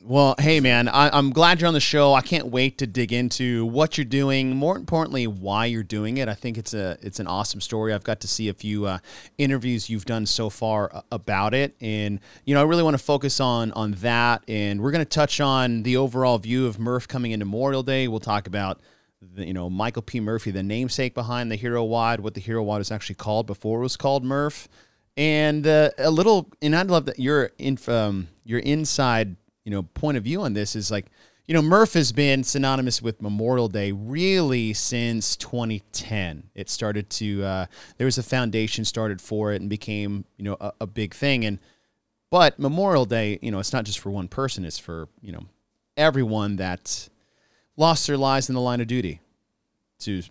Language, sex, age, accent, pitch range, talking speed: English, male, 30-49, American, 105-135 Hz, 215 wpm